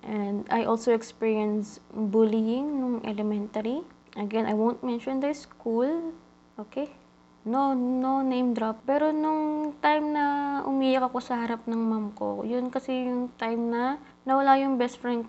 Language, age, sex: Filipino, 20-39, female